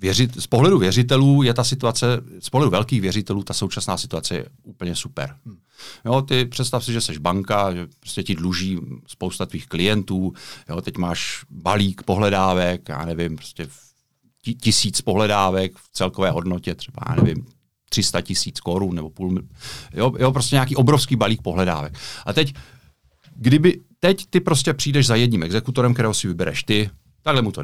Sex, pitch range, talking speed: male, 95-125 Hz, 160 wpm